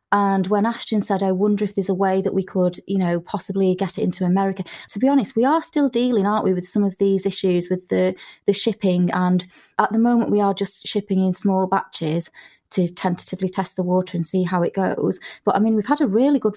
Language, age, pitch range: English, 20-39, 185-210 Hz